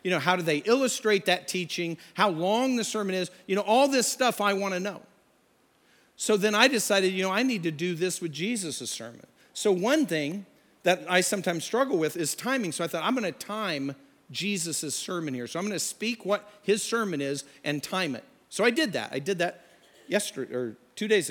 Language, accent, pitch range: English, American, 175-220 Hz